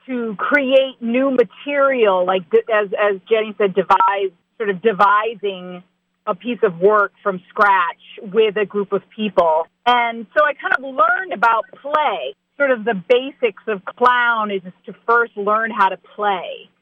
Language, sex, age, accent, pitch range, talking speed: English, female, 40-59, American, 205-260 Hz, 160 wpm